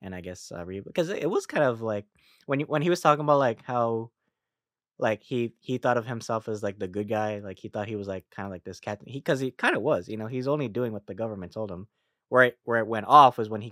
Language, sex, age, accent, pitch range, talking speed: English, male, 20-39, American, 90-110 Hz, 290 wpm